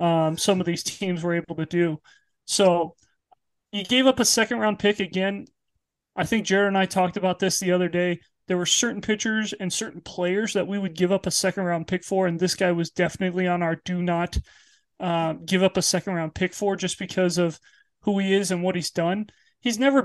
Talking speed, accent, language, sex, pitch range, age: 225 wpm, American, English, male, 175-200 Hz, 30-49